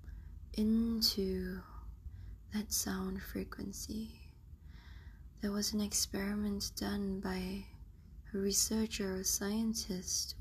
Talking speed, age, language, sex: 80 wpm, 20-39, English, female